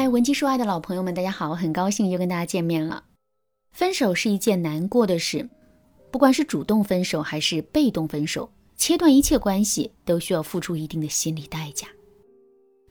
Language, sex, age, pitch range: Chinese, female, 20-39, 165-245 Hz